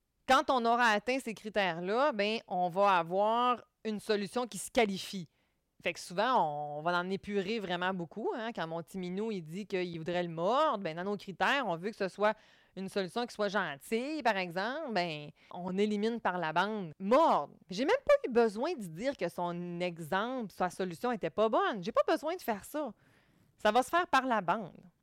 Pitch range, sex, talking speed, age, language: 185-245 Hz, female, 205 wpm, 30-49, French